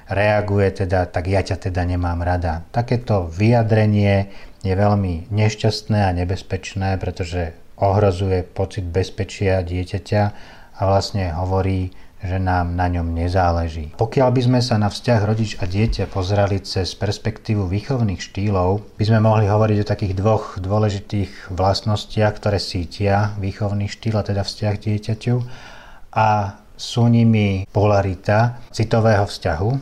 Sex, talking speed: male, 130 wpm